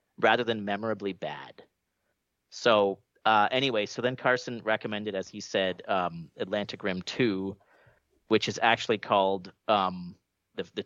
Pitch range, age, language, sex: 95-125 Hz, 40-59, English, male